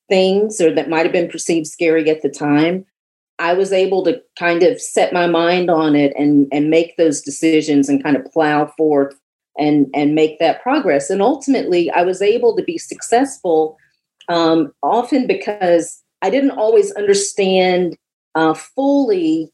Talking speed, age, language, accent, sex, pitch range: 165 wpm, 40-59, English, American, female, 155-260 Hz